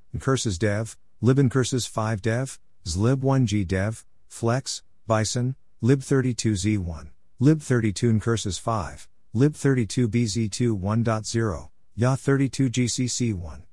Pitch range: 90-120 Hz